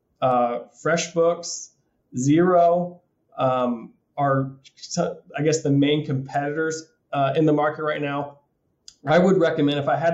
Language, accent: English, American